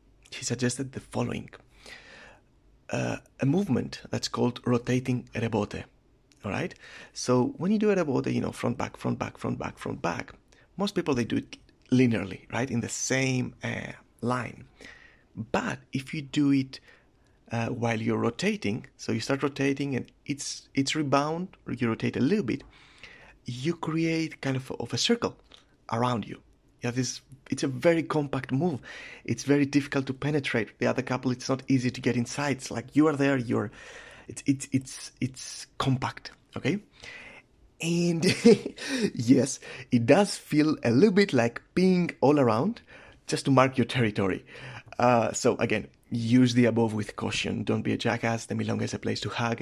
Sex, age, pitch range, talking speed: male, 30-49, 120-145 Hz, 175 wpm